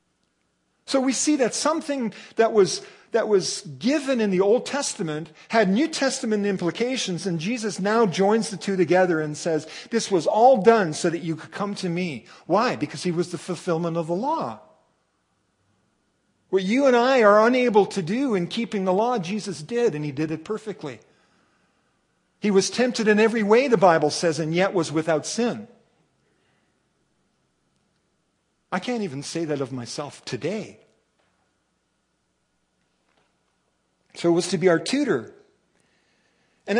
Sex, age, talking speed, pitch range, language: male, 50-69, 155 wpm, 170-235 Hz, English